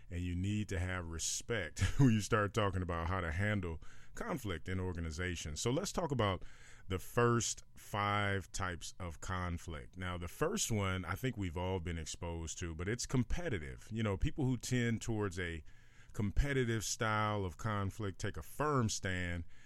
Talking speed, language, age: 170 wpm, English, 40-59